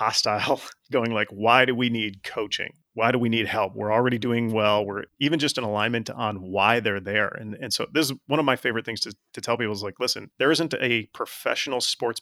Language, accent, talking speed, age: English, American, 235 wpm, 30-49